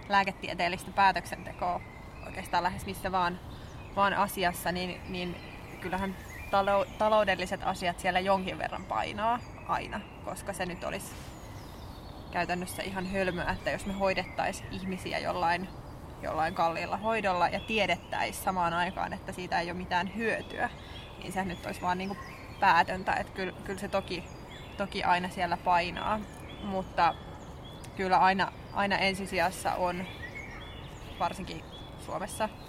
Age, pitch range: 20-39, 175-195 Hz